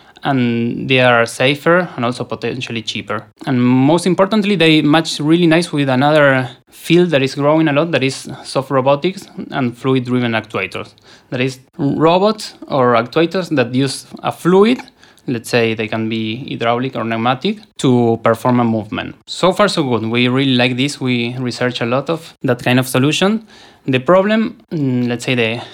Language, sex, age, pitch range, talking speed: English, male, 20-39, 120-150 Hz, 175 wpm